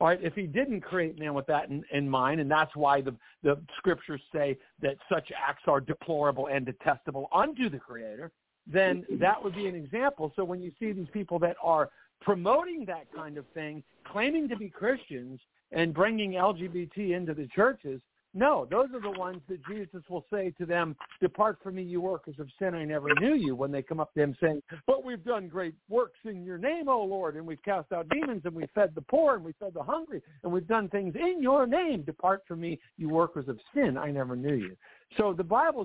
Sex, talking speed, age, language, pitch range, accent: male, 220 wpm, 60-79, English, 145-195 Hz, American